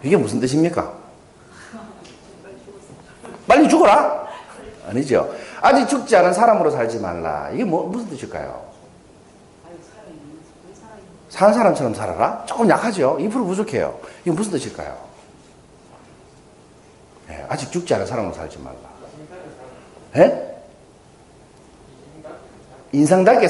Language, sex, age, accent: Korean, male, 40-59, native